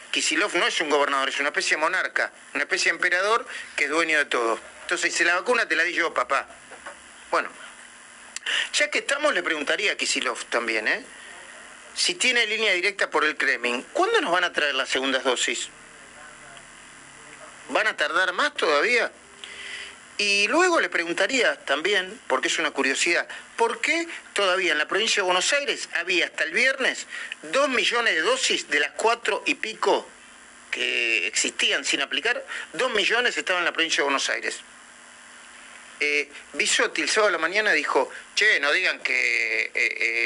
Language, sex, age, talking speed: Spanish, male, 40-59, 175 wpm